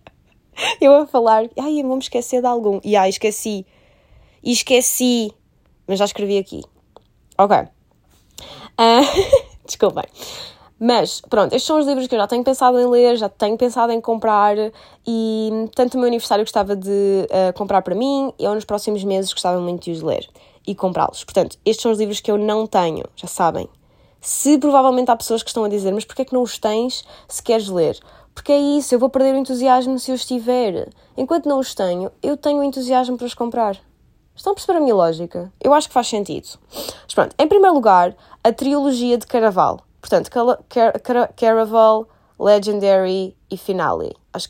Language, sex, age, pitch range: Portuguese, female, 20-39, 200-255 Hz